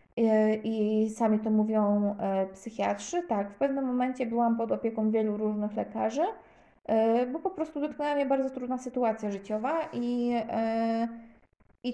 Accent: native